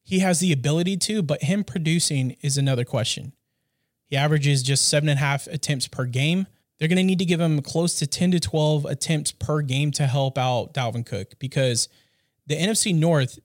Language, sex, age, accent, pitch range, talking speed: English, male, 30-49, American, 130-165 Hz, 200 wpm